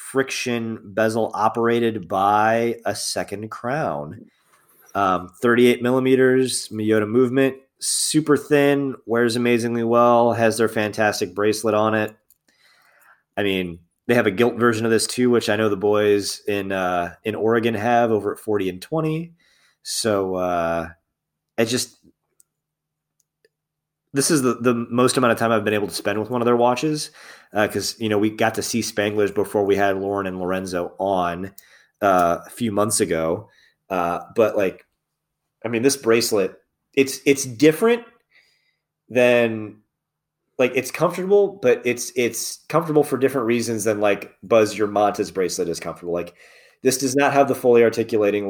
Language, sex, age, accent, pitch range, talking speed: English, male, 20-39, American, 105-130 Hz, 160 wpm